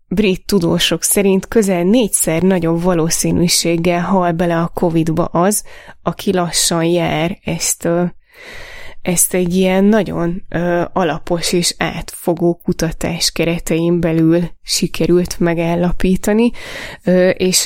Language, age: Hungarian, 20-39